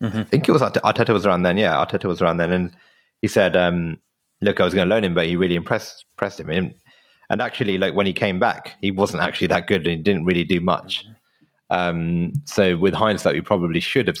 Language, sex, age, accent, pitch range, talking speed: English, male, 30-49, British, 85-100 Hz, 235 wpm